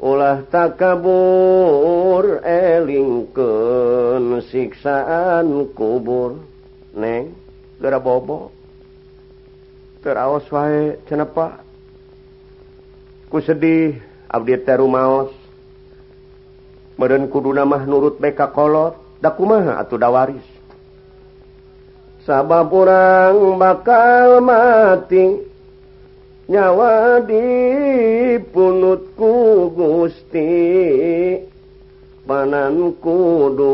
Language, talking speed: Indonesian, 55 wpm